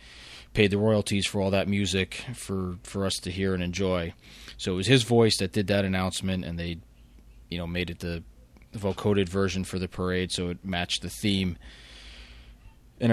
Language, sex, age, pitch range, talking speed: English, male, 20-39, 85-105 Hz, 185 wpm